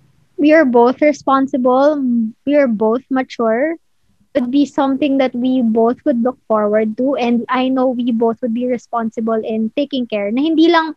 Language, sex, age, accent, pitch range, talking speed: English, female, 20-39, Filipino, 240-300 Hz, 180 wpm